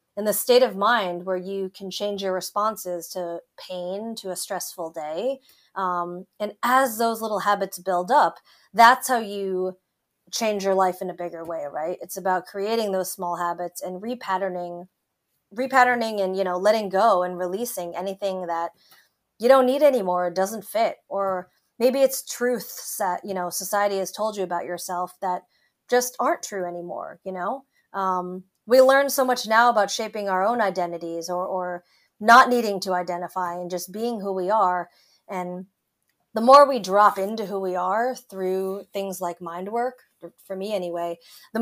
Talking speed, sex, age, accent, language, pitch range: 175 wpm, female, 30-49, American, English, 180-230 Hz